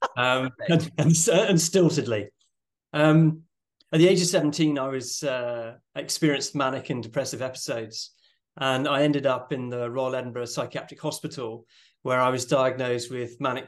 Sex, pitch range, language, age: male, 125-150 Hz, English, 30-49